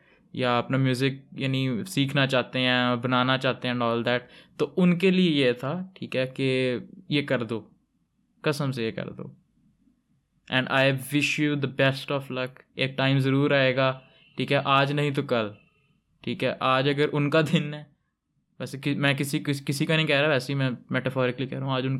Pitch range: 125-150 Hz